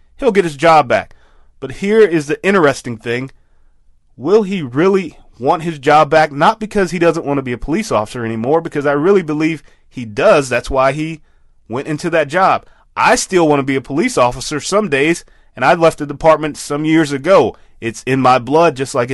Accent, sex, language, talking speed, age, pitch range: American, male, English, 205 wpm, 30-49, 115-160 Hz